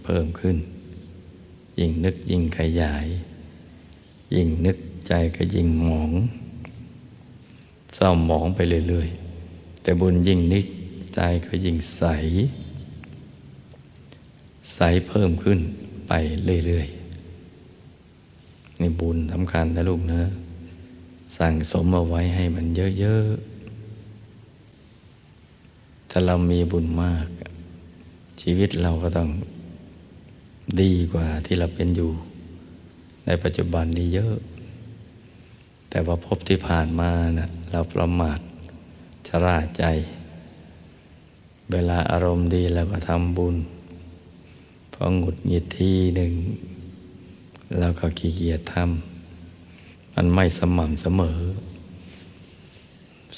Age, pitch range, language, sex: 60-79, 85-90 Hz, Thai, male